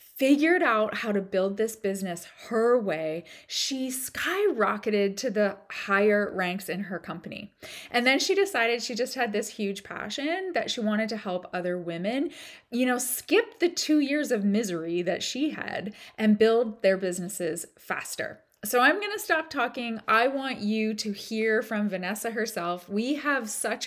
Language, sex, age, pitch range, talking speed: English, female, 20-39, 205-275 Hz, 170 wpm